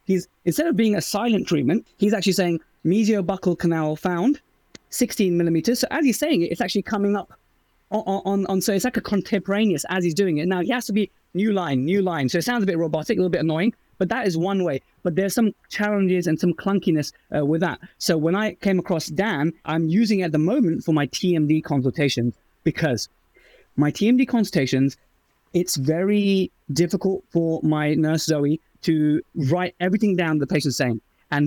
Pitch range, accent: 155-200 Hz, British